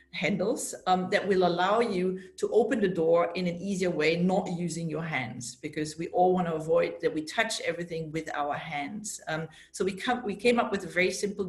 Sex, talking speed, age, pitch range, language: female, 220 wpm, 40-59, 170-200 Hz, English